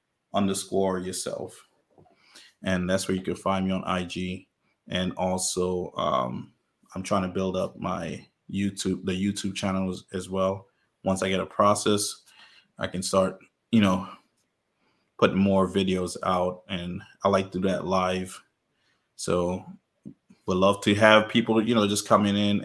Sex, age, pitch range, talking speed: male, 20-39, 95-105 Hz, 155 wpm